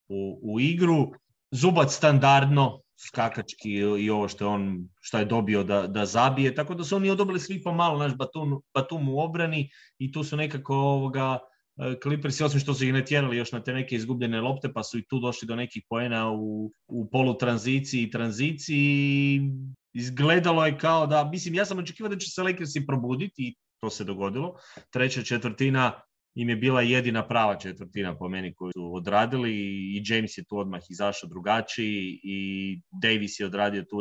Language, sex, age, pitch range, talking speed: English, male, 30-49, 100-135 Hz, 180 wpm